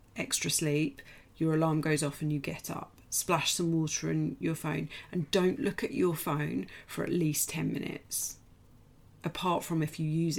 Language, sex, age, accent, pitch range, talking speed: English, female, 30-49, British, 140-165 Hz, 185 wpm